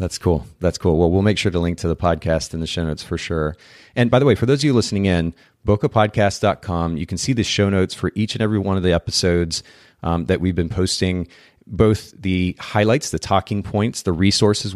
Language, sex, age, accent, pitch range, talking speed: English, male, 30-49, American, 90-105 Hz, 230 wpm